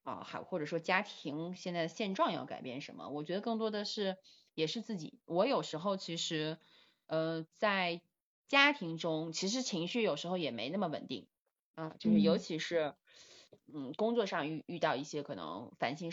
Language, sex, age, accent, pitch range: Chinese, female, 20-39, native, 155-210 Hz